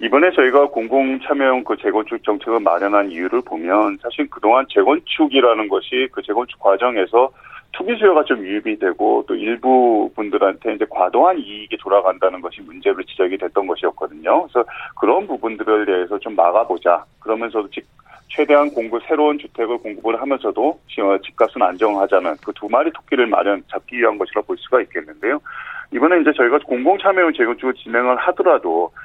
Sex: male